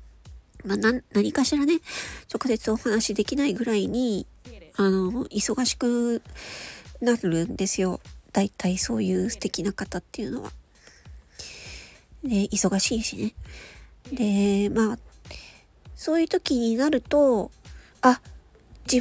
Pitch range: 205-280 Hz